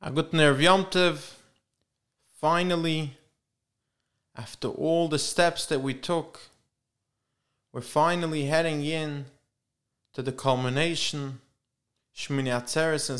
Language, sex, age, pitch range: English, male, 20-39, 130-175 Hz